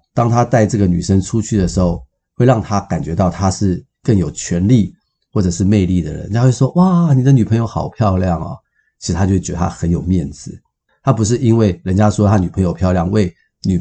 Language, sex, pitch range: Chinese, male, 90-110 Hz